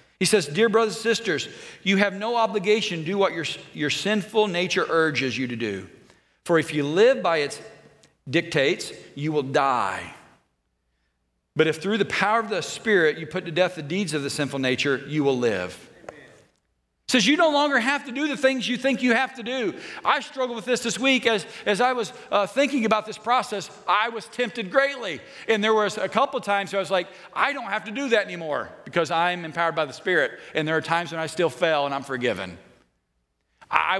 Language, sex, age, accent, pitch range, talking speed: English, male, 40-59, American, 150-215 Hz, 215 wpm